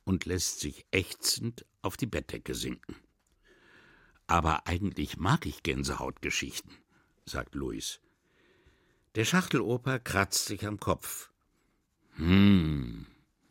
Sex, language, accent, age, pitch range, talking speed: male, German, German, 60-79, 75-110 Hz, 100 wpm